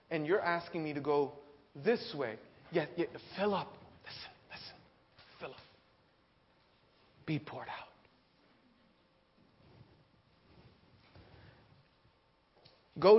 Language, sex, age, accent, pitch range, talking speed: English, male, 40-59, American, 130-165 Hz, 85 wpm